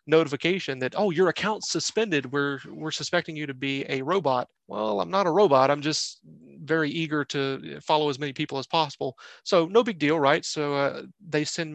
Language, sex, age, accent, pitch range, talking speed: English, male, 30-49, American, 140-155 Hz, 200 wpm